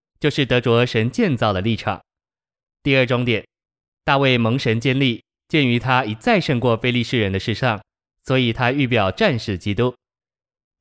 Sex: male